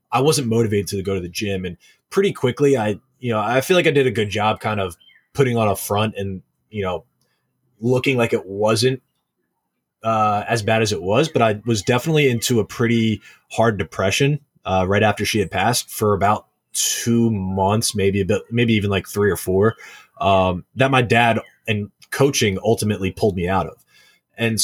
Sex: male